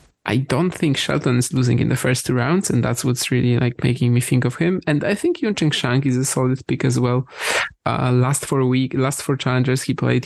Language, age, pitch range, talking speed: English, 20-39, 125-150 Hz, 245 wpm